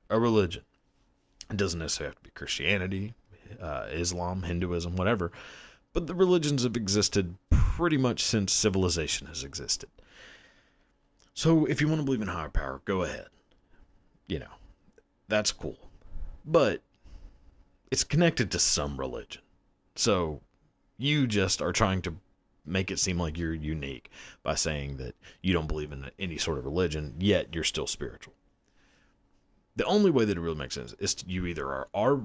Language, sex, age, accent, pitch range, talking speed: English, male, 30-49, American, 80-105 Hz, 160 wpm